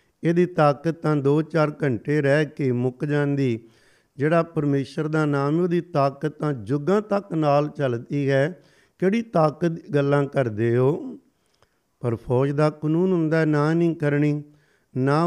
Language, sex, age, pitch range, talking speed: Punjabi, male, 50-69, 140-160 Hz, 140 wpm